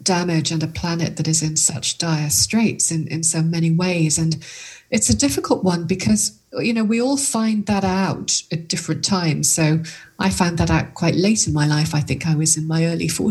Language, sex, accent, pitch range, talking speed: English, female, British, 160-190 Hz, 215 wpm